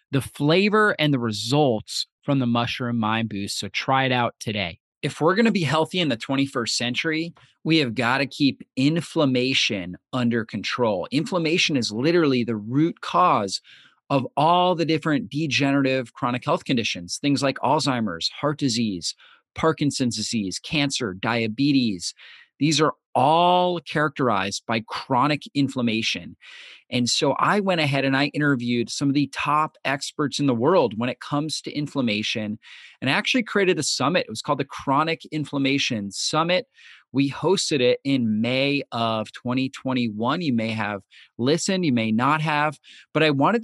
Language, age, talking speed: English, 30-49, 160 wpm